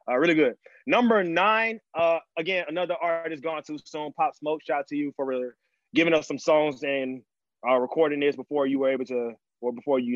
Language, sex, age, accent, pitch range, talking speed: English, male, 20-39, American, 135-165 Hz, 220 wpm